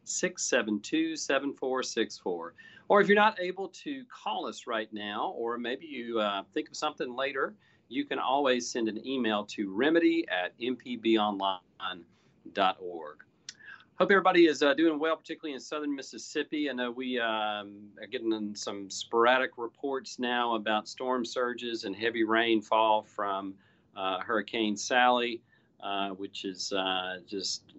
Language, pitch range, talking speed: English, 100-125 Hz, 135 wpm